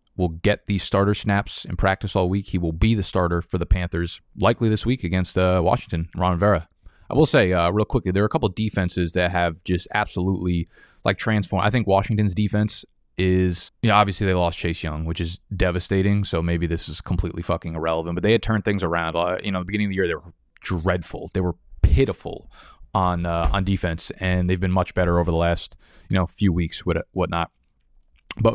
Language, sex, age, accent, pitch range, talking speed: English, male, 20-39, American, 85-105 Hz, 220 wpm